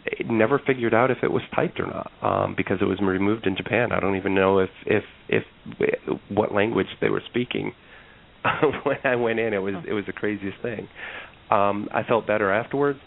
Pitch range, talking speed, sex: 95-110 Hz, 205 wpm, male